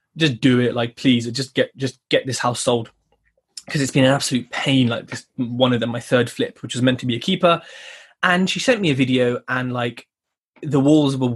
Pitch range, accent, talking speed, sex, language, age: 125-145 Hz, British, 230 wpm, male, English, 20-39